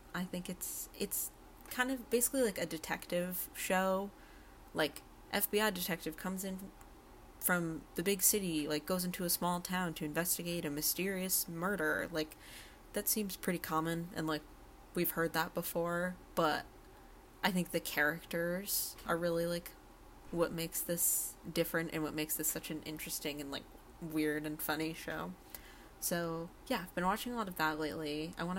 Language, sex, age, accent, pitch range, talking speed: English, female, 20-39, American, 160-190 Hz, 165 wpm